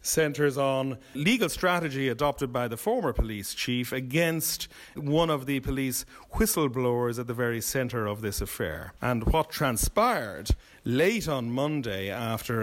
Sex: male